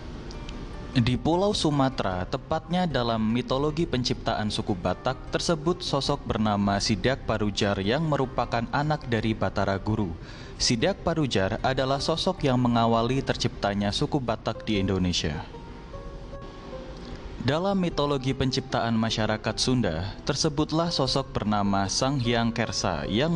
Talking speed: 110 wpm